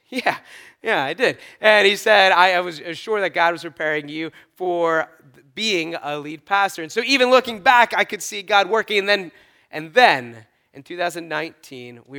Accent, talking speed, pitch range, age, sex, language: American, 180 wpm, 135-180 Hz, 20-39, male, English